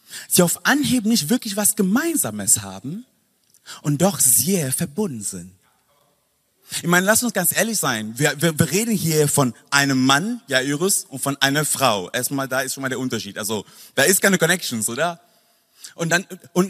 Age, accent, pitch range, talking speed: 30-49, German, 130-195 Hz, 175 wpm